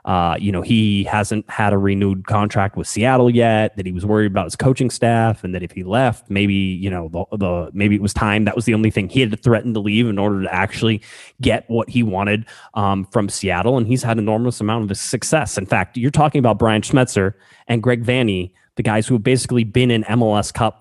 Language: English